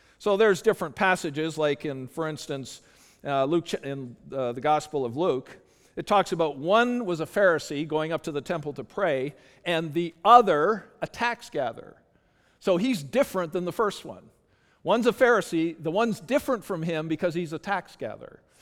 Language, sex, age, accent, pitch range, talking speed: English, male, 50-69, American, 160-215 Hz, 170 wpm